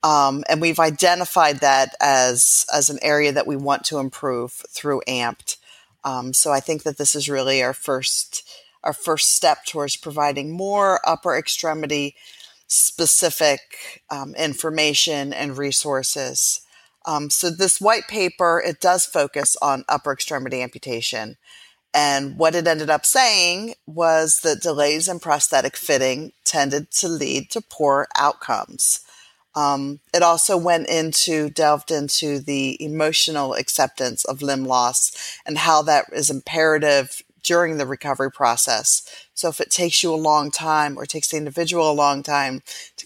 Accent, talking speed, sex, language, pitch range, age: American, 145 wpm, female, English, 140-160 Hz, 30-49